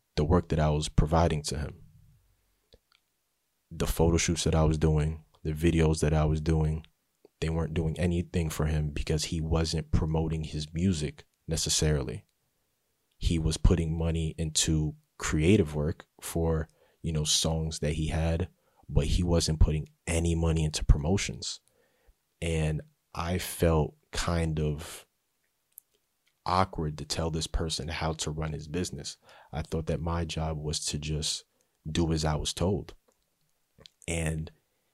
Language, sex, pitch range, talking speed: English, male, 75-85 Hz, 145 wpm